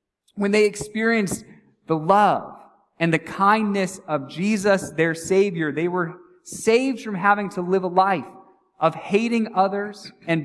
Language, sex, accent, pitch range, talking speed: English, male, American, 175-220 Hz, 145 wpm